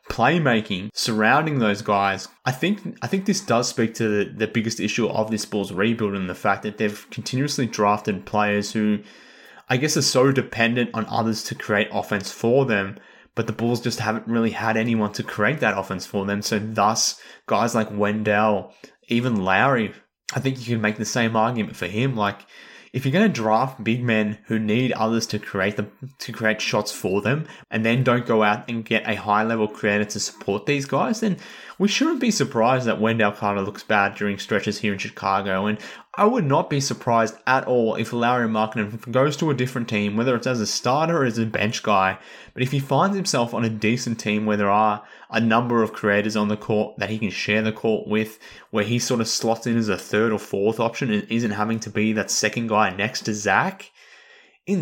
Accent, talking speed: Australian, 215 wpm